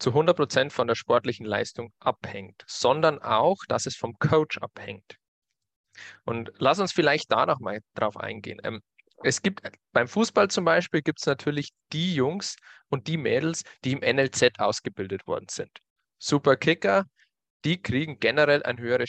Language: German